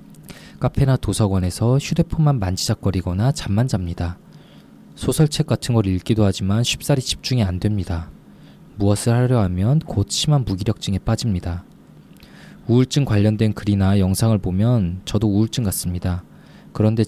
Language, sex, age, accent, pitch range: Korean, male, 20-39, native, 95-120 Hz